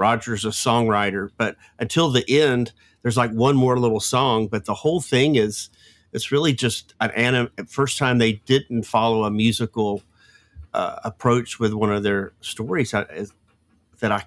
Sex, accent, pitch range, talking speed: male, American, 105-125 Hz, 165 wpm